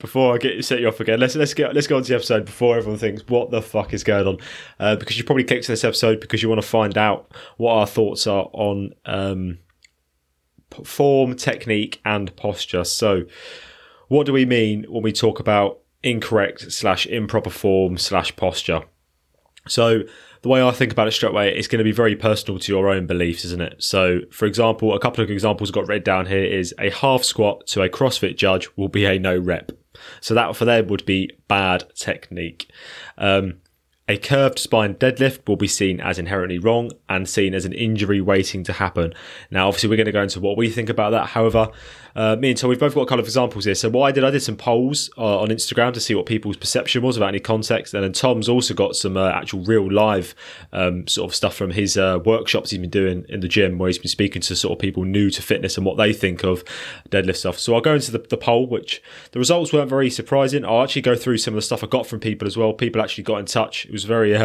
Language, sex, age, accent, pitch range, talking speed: English, male, 20-39, British, 95-120 Hz, 240 wpm